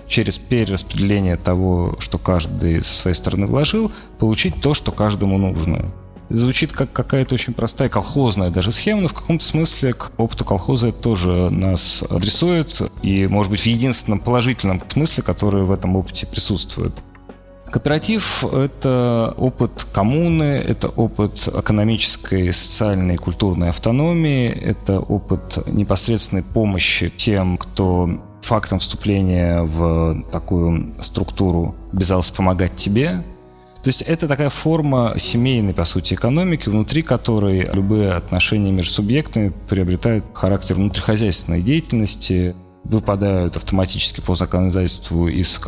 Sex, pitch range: male, 90-120 Hz